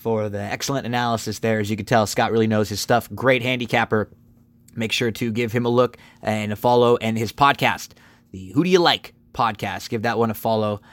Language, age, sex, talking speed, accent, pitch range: English, 20-39, male, 220 wpm, American, 115-150 Hz